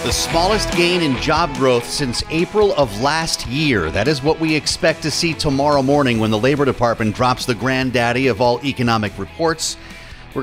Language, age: English, 40-59